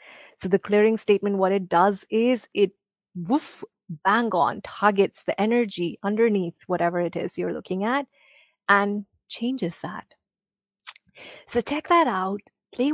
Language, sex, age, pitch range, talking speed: English, female, 30-49, 180-230 Hz, 140 wpm